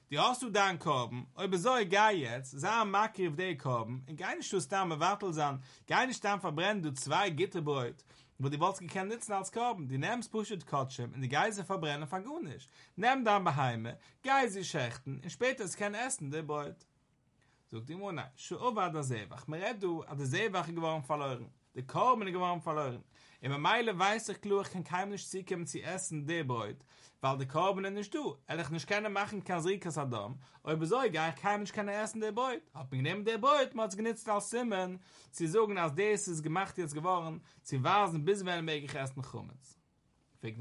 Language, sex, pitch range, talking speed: English, male, 140-200 Hz, 210 wpm